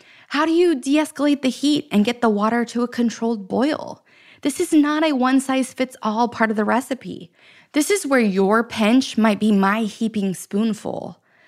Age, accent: 20-39, American